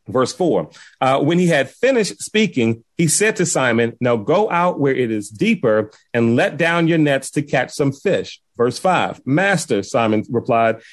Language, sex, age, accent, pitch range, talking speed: English, male, 30-49, American, 135-175 Hz, 180 wpm